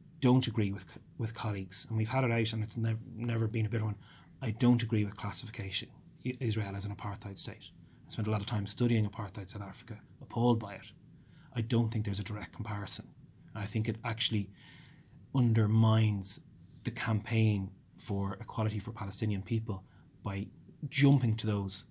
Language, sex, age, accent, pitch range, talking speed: English, male, 30-49, Irish, 105-120 Hz, 180 wpm